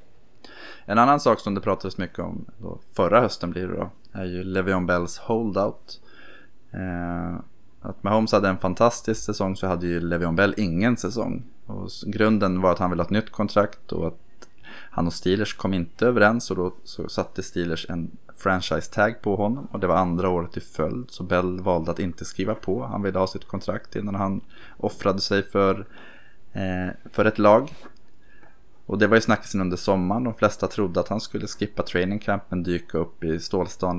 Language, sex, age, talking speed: Swedish, male, 20-39, 185 wpm